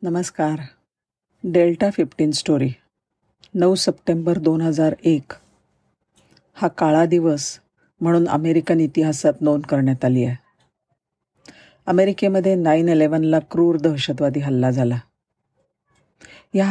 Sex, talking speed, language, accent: female, 90 wpm, Marathi, native